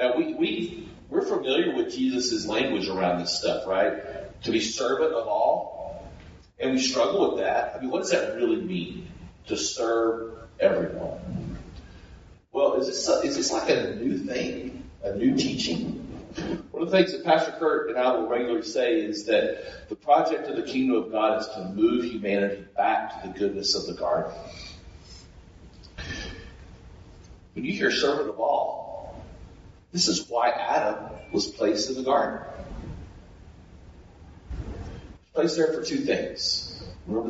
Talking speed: 155 wpm